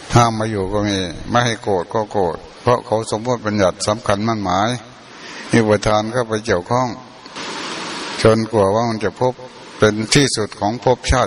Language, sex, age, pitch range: Thai, male, 60-79, 100-115 Hz